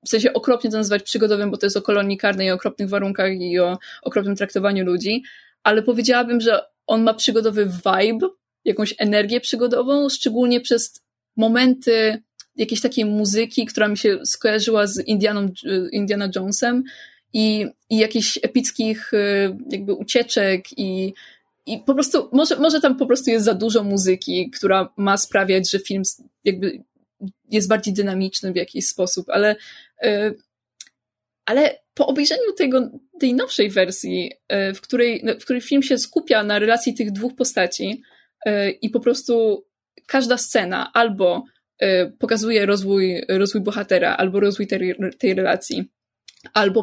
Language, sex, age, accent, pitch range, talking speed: Polish, female, 20-39, native, 200-245 Hz, 140 wpm